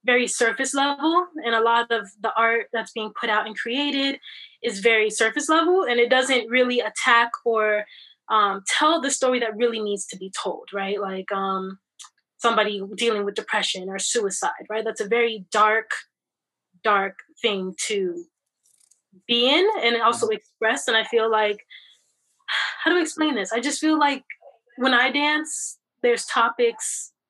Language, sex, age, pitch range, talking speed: English, female, 20-39, 215-265 Hz, 165 wpm